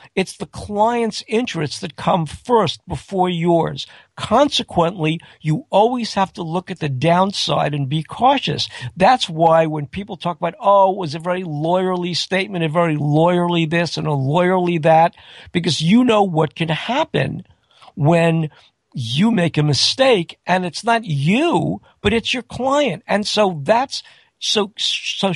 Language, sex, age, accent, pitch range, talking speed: English, male, 50-69, American, 160-210 Hz, 155 wpm